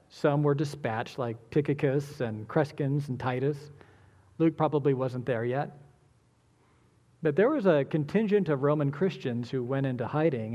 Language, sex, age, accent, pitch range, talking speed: English, male, 40-59, American, 125-155 Hz, 150 wpm